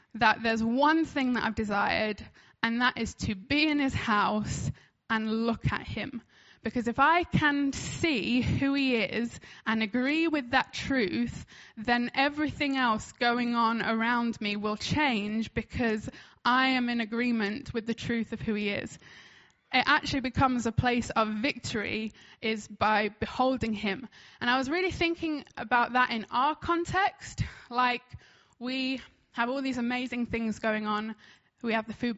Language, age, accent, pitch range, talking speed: English, 10-29, British, 220-265 Hz, 160 wpm